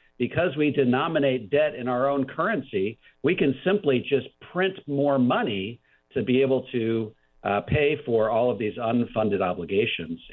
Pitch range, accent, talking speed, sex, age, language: 115-135 Hz, American, 155 wpm, male, 50-69, English